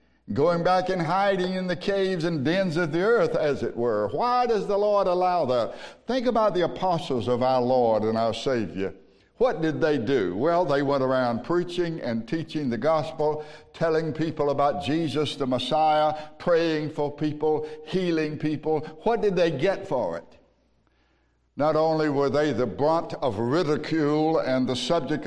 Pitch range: 130-165 Hz